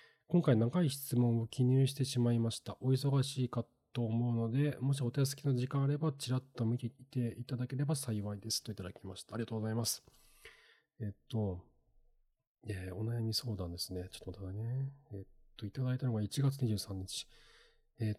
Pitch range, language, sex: 110-140 Hz, Japanese, male